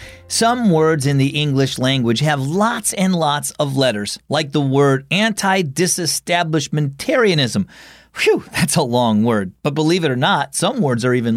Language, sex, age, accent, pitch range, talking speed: English, male, 40-59, American, 135-195 Hz, 160 wpm